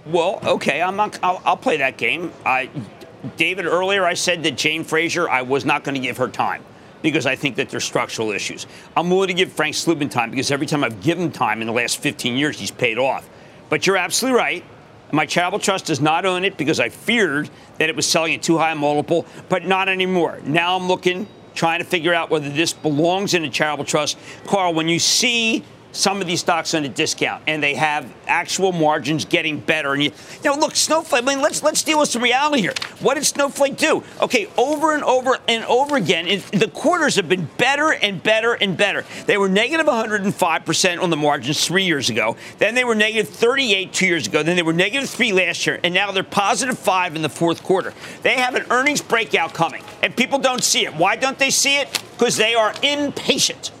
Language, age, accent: English, 50-69, American